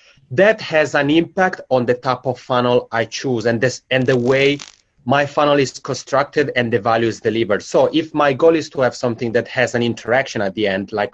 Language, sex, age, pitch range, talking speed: English, male, 30-49, 120-150 Hz, 220 wpm